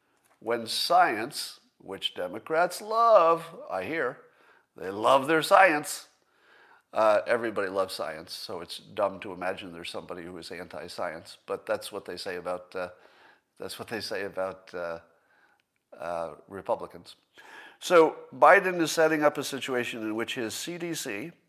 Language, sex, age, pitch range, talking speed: English, male, 50-69, 115-170 Hz, 140 wpm